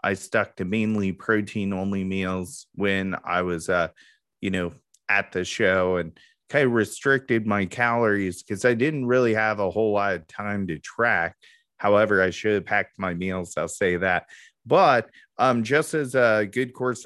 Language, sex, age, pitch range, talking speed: English, male, 30-49, 95-110 Hz, 180 wpm